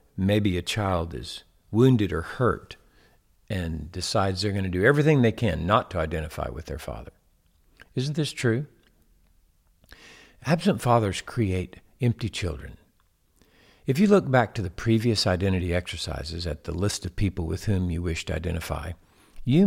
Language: English